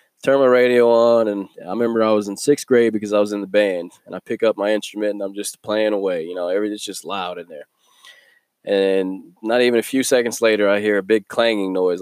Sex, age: male, 20-39